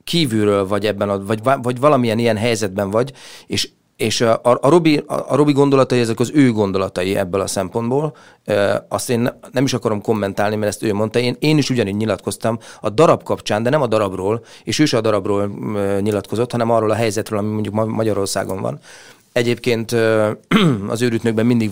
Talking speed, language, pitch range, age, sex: 185 wpm, Hungarian, 100-120 Hz, 30-49, male